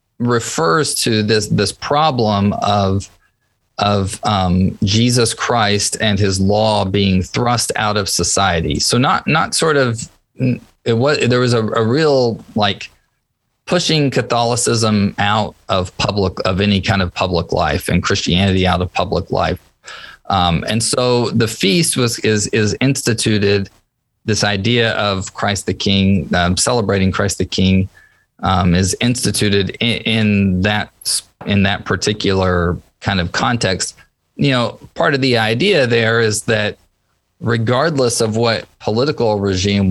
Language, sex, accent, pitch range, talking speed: English, male, American, 95-120 Hz, 140 wpm